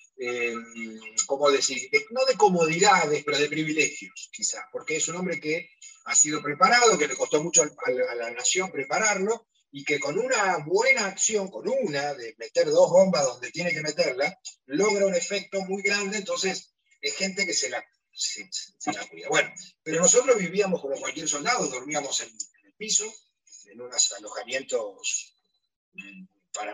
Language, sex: Spanish, male